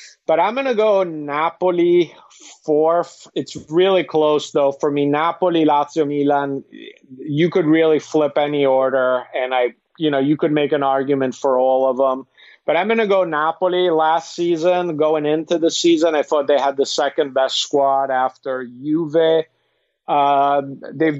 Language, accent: English, American